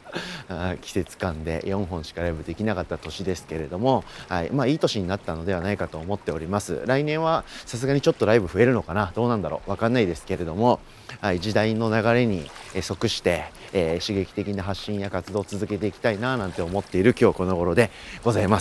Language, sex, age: Japanese, male, 30-49